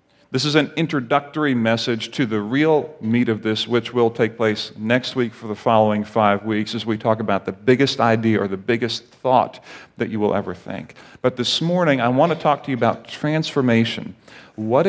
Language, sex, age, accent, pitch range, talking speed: English, male, 40-59, American, 110-140 Hz, 200 wpm